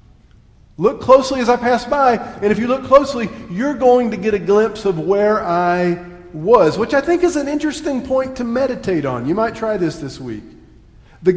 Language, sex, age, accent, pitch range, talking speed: English, male, 40-59, American, 175-245 Hz, 200 wpm